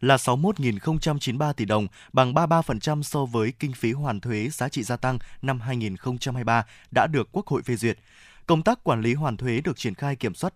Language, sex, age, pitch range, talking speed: Vietnamese, male, 20-39, 115-150 Hz, 200 wpm